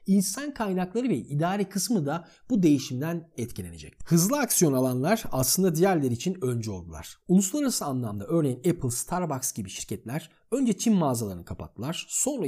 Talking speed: 140 wpm